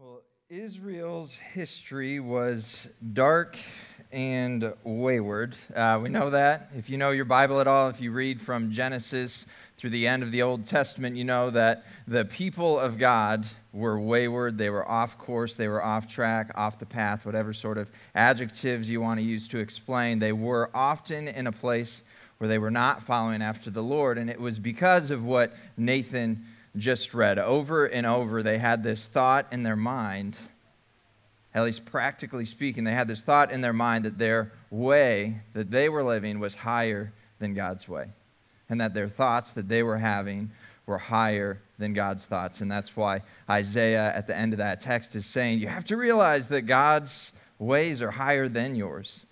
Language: English